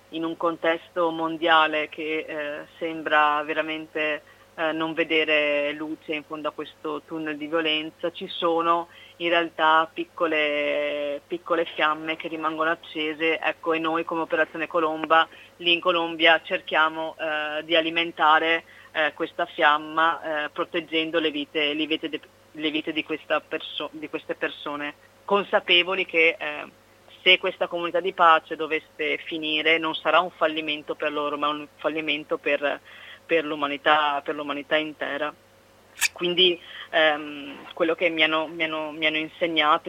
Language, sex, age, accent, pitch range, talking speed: Italian, female, 30-49, native, 150-165 Hz, 145 wpm